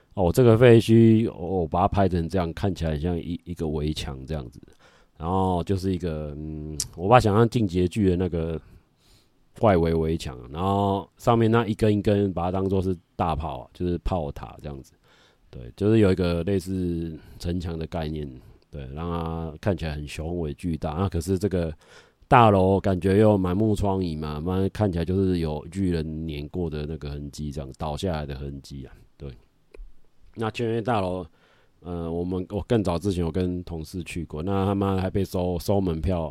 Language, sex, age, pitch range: Chinese, male, 30-49, 80-100 Hz